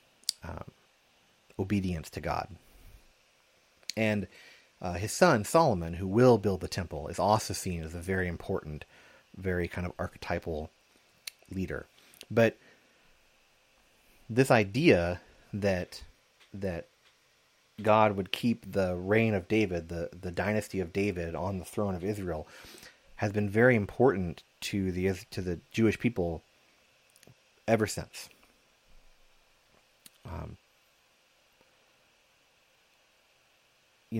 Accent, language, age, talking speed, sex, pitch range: American, English, 30-49, 110 wpm, male, 85-105 Hz